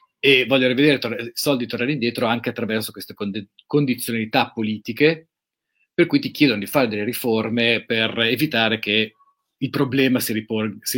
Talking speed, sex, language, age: 140 wpm, male, Italian, 40-59